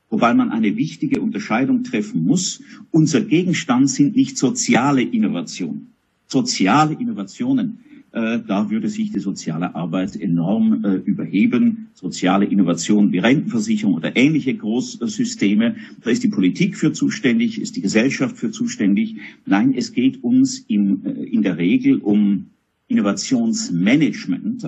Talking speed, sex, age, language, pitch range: 130 wpm, male, 50-69, German, 155-255 Hz